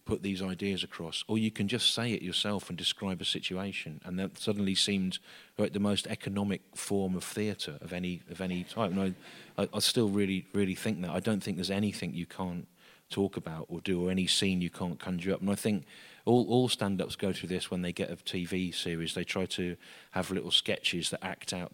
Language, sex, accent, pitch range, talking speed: English, male, British, 85-95 Hz, 230 wpm